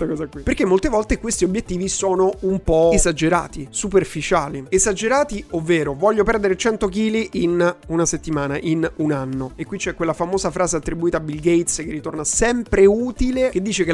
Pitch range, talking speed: 170-220 Hz, 175 wpm